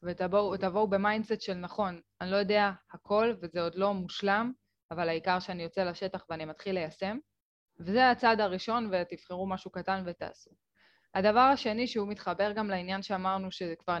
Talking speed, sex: 155 wpm, female